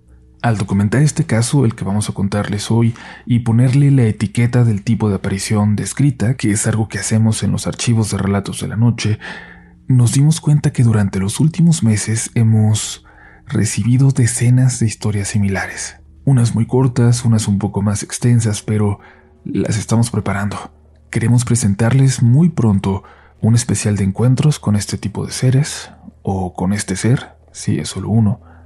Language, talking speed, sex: Spanish, 165 wpm, male